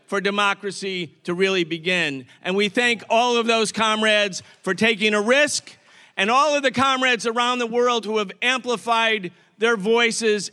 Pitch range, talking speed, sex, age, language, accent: 215-260 Hz, 165 wpm, male, 50-69, English, American